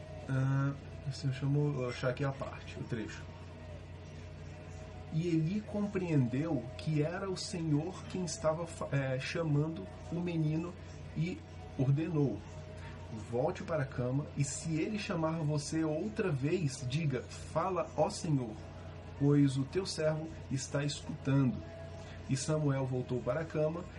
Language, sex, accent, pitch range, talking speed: Portuguese, male, Brazilian, 90-145 Hz, 125 wpm